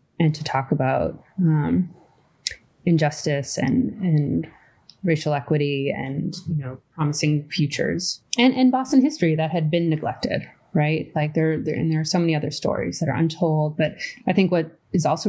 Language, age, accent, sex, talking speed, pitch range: English, 20-39, American, female, 170 wpm, 145-170 Hz